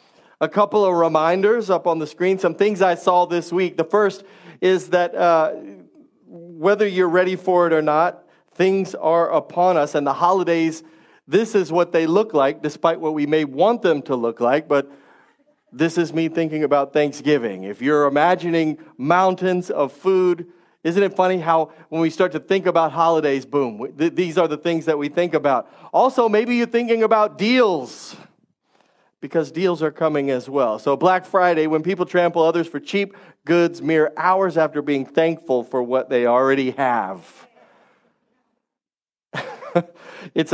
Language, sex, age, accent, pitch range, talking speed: English, male, 40-59, American, 150-185 Hz, 170 wpm